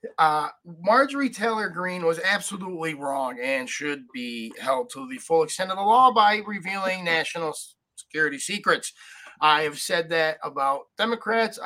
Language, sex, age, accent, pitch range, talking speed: English, male, 30-49, American, 160-245 Hz, 150 wpm